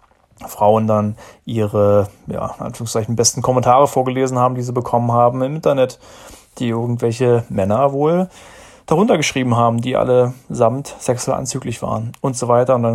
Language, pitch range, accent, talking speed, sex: German, 110-130 Hz, German, 155 wpm, male